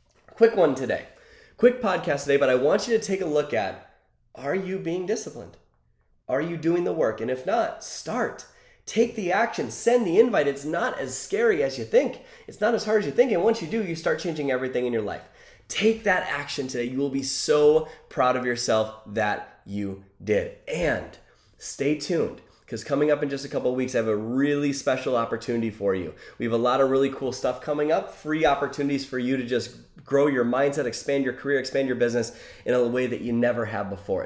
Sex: male